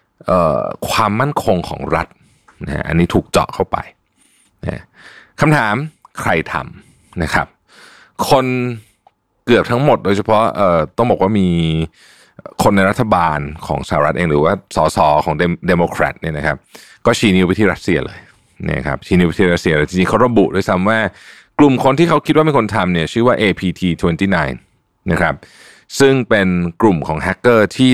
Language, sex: Thai, male